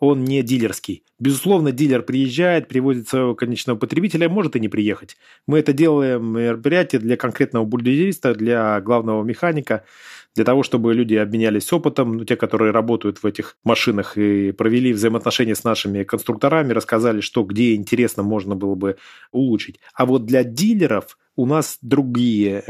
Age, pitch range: 20-39, 110-140 Hz